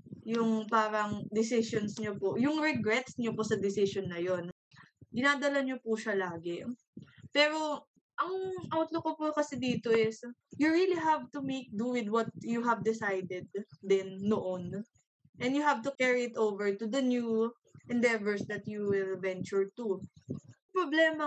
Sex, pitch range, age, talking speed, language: female, 200-255 Hz, 20-39, 160 wpm, Filipino